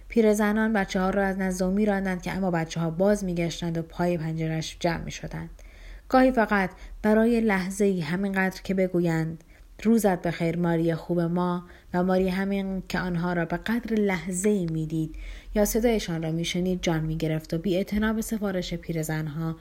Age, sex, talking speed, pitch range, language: 30-49, female, 170 wpm, 165-195 Hz, Persian